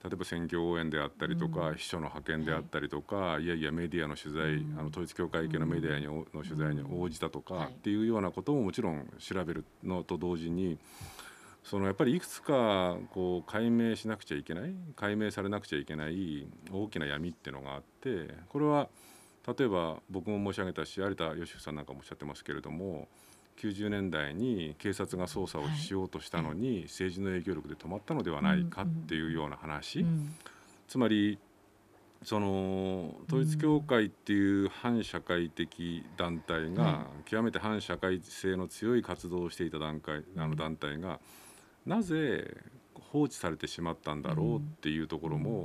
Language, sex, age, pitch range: Japanese, male, 50-69, 80-110 Hz